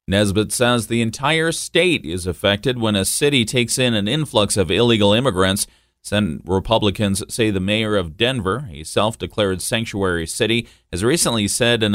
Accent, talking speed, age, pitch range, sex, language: American, 160 wpm, 40-59, 95-120 Hz, male, English